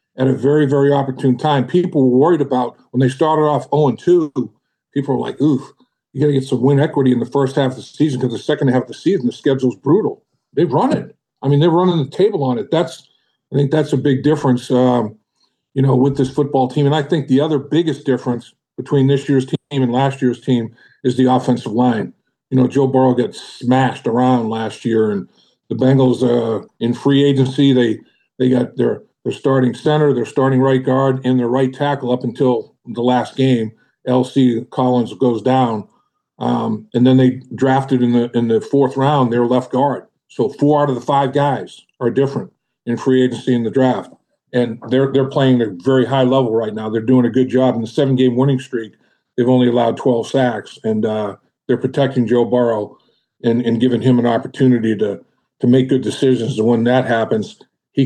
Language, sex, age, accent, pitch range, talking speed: English, male, 50-69, American, 120-135 Hz, 210 wpm